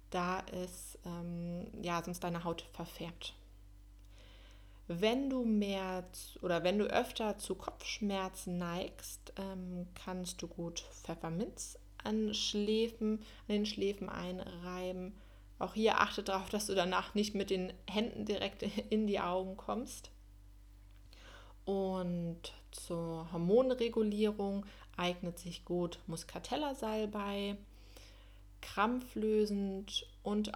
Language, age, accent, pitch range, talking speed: German, 30-49, German, 170-210 Hz, 110 wpm